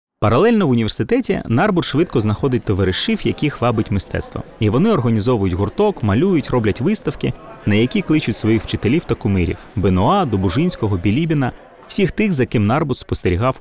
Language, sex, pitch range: Ukrainian, male, 95-135 Hz